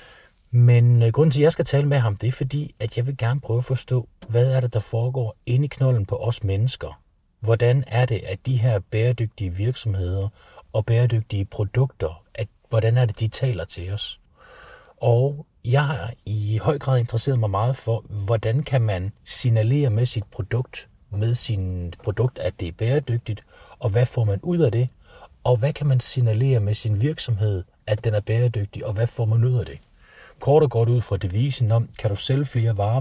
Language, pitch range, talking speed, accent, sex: Danish, 100-125 Hz, 200 wpm, native, male